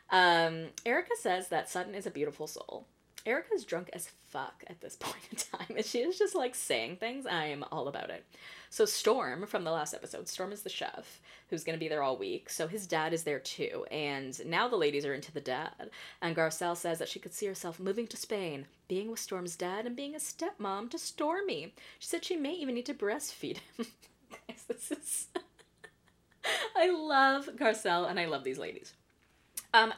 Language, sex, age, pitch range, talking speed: English, female, 20-39, 160-230 Hz, 200 wpm